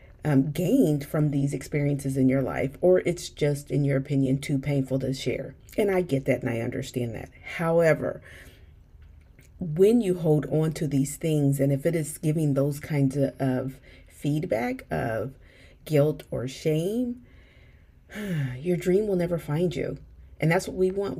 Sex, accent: female, American